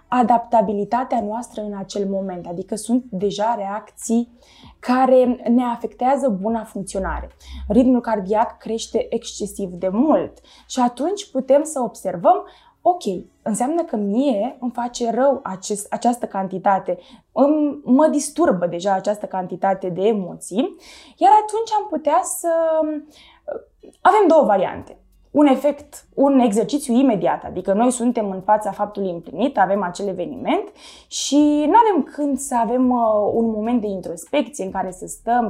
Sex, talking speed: female, 135 wpm